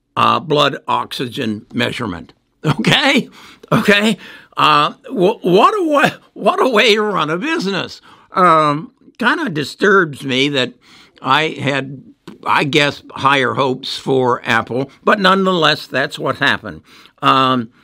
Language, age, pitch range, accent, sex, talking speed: English, 60-79, 130-175 Hz, American, male, 130 wpm